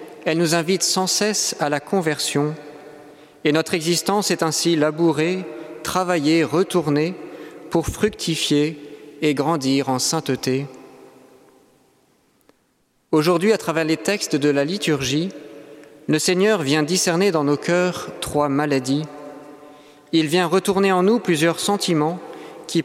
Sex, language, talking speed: male, French, 125 wpm